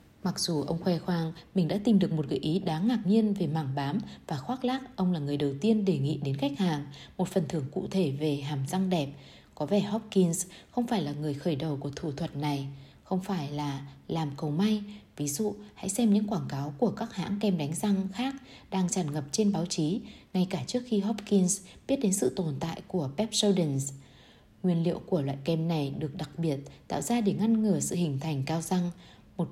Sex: female